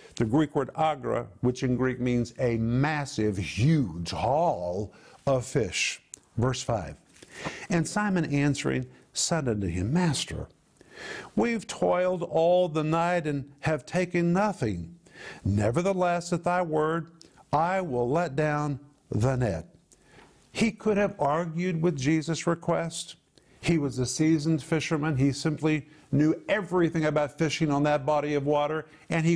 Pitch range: 130-175 Hz